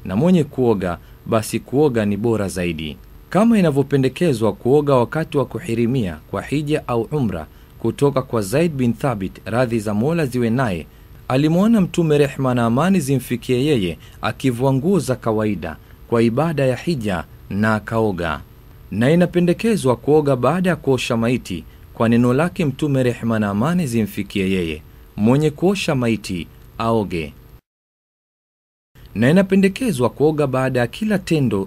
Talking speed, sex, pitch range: 135 wpm, male, 110-150 Hz